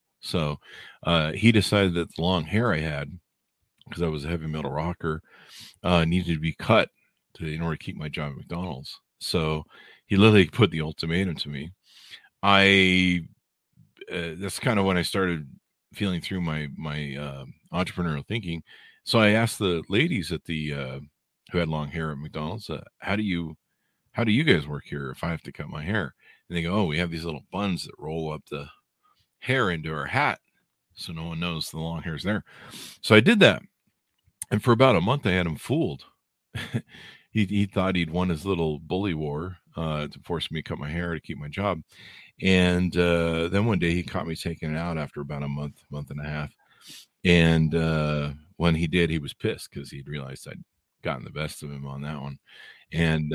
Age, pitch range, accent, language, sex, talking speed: 40-59, 75-90 Hz, American, English, male, 205 wpm